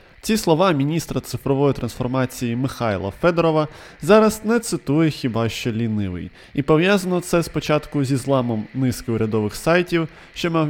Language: Ukrainian